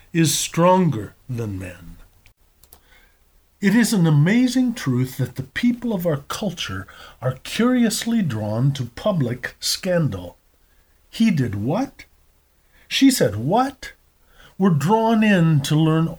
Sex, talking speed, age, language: male, 120 wpm, 50-69, English